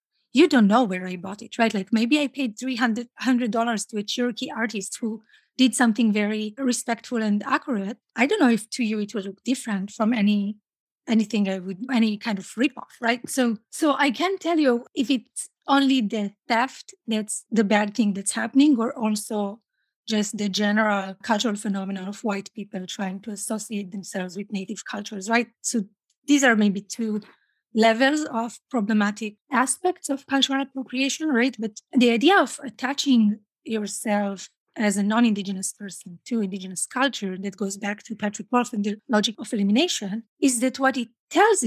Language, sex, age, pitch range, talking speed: English, female, 30-49, 205-260 Hz, 175 wpm